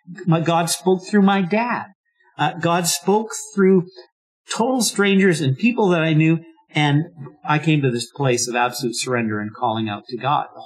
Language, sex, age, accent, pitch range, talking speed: English, male, 50-69, American, 125-175 Hz, 180 wpm